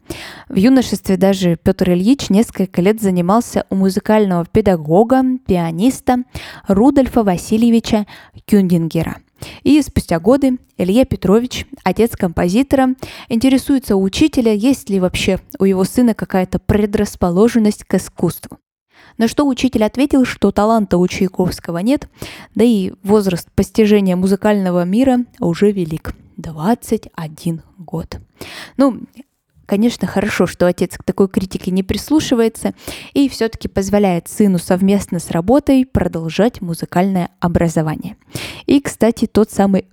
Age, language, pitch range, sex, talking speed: 20-39, Russian, 180-230 Hz, female, 115 wpm